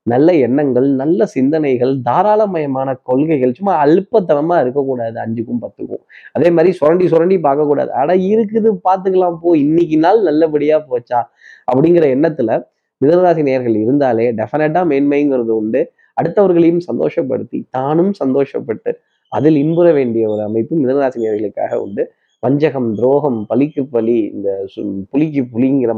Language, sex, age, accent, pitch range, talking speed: Tamil, male, 20-39, native, 120-180 Hz, 120 wpm